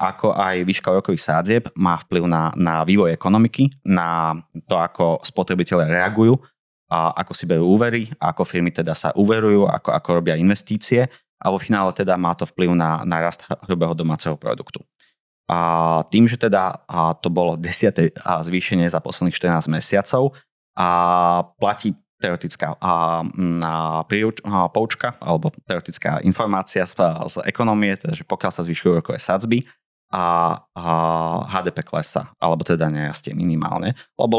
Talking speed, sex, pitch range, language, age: 140 wpm, male, 80-100 Hz, Slovak, 20-39